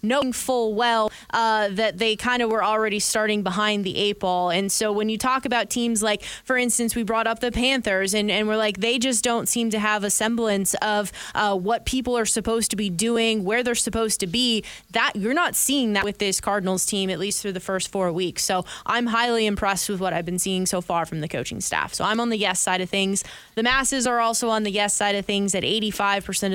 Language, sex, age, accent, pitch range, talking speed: English, female, 20-39, American, 200-235 Hz, 245 wpm